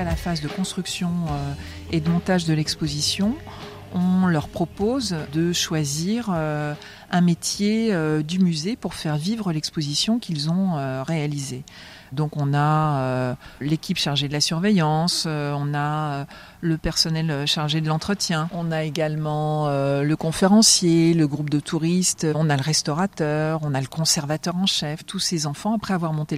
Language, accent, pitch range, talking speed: French, French, 150-175 Hz, 150 wpm